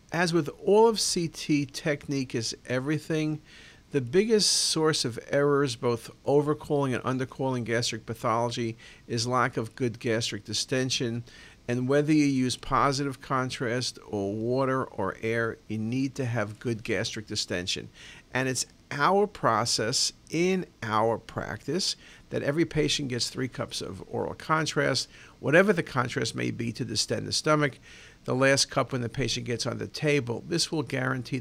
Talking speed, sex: 155 wpm, male